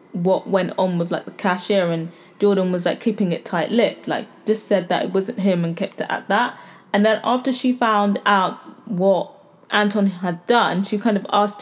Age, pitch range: 20-39, 195-245 Hz